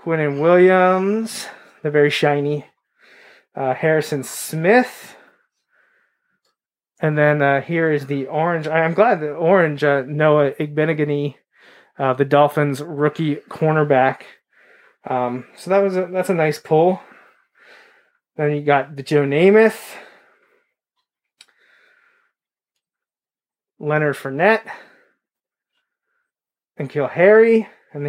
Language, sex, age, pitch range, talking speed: English, male, 20-39, 140-180 Hz, 105 wpm